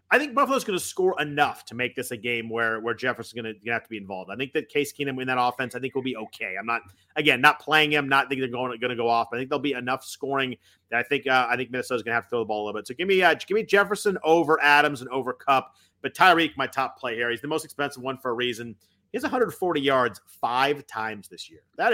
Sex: male